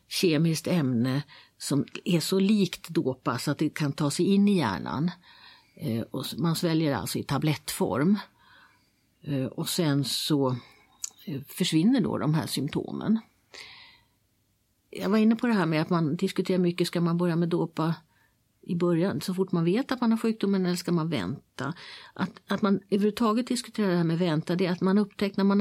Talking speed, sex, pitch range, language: 175 wpm, female, 165-215 Hz, Swedish